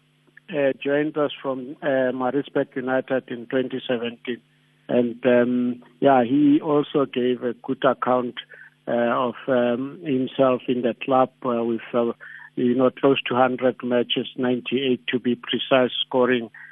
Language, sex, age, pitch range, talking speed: English, male, 60-79, 120-135 Hz, 135 wpm